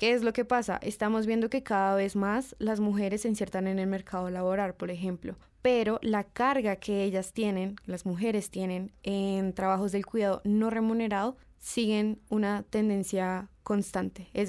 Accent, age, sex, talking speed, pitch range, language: Colombian, 20-39, female, 170 wpm, 195-230 Hz, Spanish